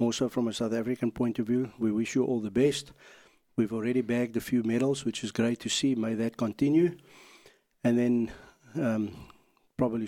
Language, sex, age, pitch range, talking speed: English, male, 60-79, 115-125 Hz, 190 wpm